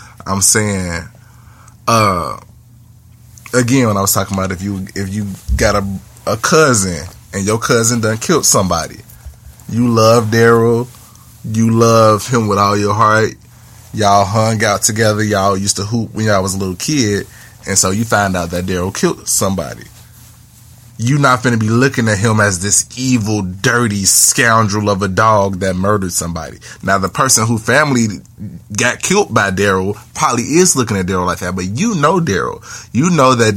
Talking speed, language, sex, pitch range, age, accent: 175 wpm, English, male, 100-120 Hz, 20-39, American